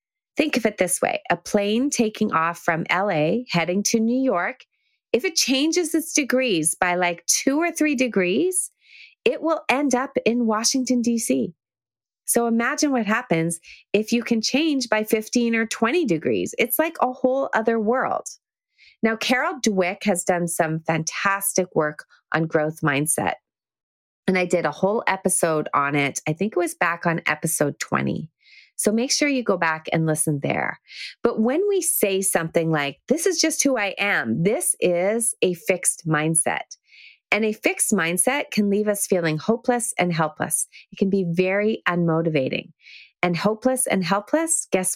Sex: female